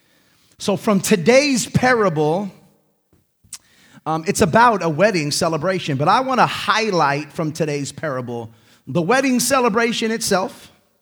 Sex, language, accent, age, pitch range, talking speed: male, English, American, 30-49, 115-170 Hz, 120 wpm